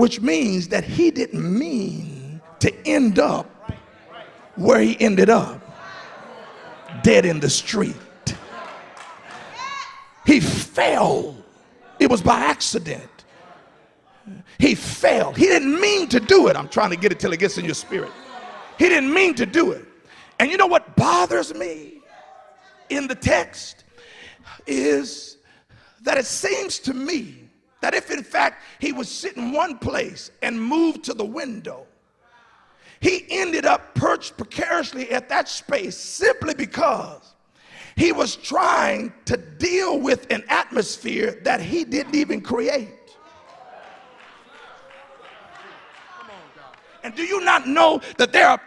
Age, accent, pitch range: 50-69, American, 230-340 Hz